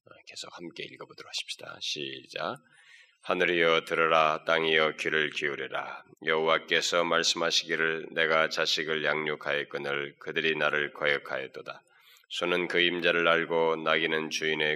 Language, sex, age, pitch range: Korean, male, 20-39, 80-85 Hz